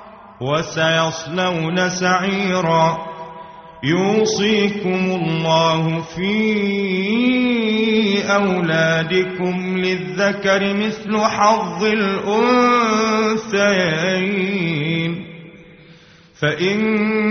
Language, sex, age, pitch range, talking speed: Arabic, male, 30-49, 180-215 Hz, 40 wpm